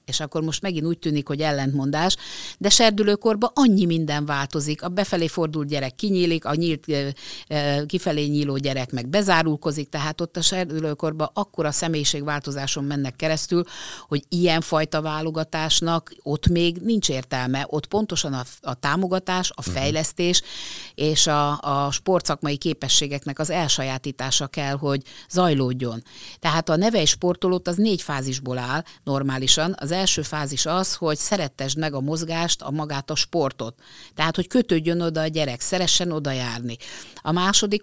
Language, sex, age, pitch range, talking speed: Hungarian, female, 50-69, 140-180 Hz, 145 wpm